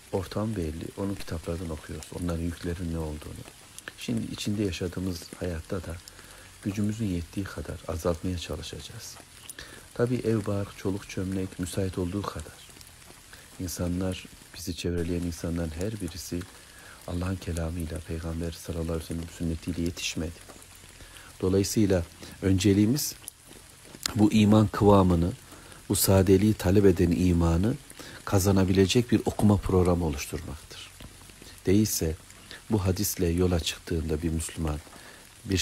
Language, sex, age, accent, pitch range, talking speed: Turkish, male, 60-79, native, 85-100 Hz, 110 wpm